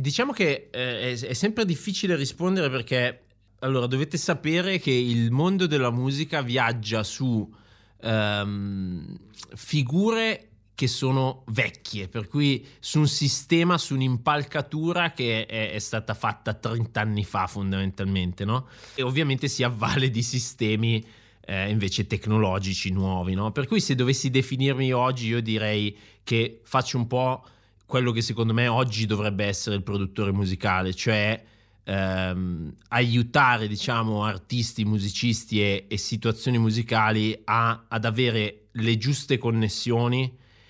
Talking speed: 130 wpm